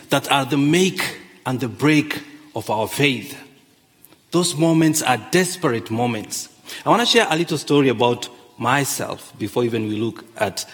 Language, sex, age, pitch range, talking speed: English, male, 40-59, 115-140 Hz, 155 wpm